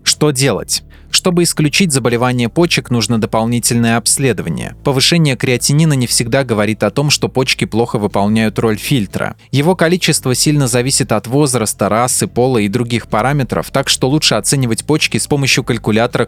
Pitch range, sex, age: 110-140 Hz, male, 20-39